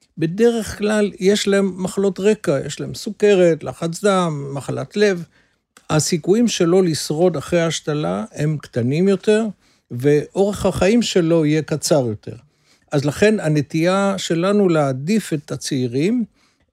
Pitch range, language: 145-195 Hz, Hebrew